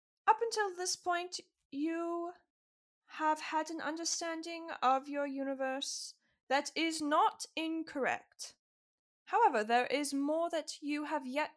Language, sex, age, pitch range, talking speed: English, female, 10-29, 270-345 Hz, 125 wpm